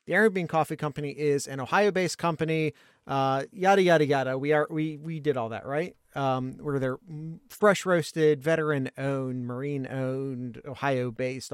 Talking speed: 140 wpm